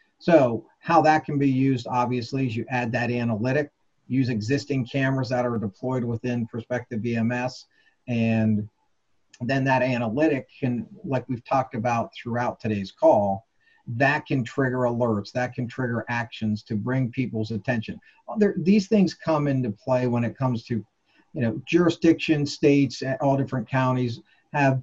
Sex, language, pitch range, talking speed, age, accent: male, English, 115-135 Hz, 150 wpm, 50-69, American